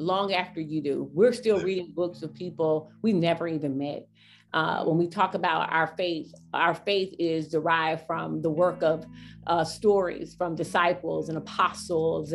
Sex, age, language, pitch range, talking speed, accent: female, 40-59, English, 160-185 Hz, 170 wpm, American